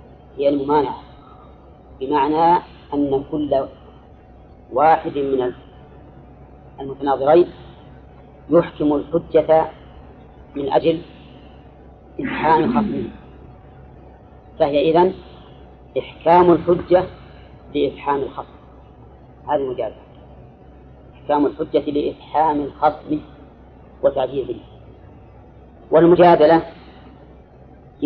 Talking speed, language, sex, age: 60 wpm, Arabic, female, 40-59